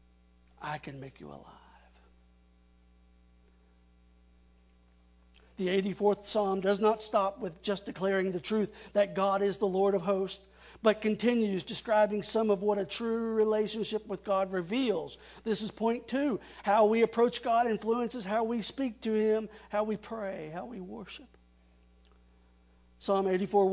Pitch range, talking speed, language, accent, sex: 175-225 Hz, 145 wpm, English, American, male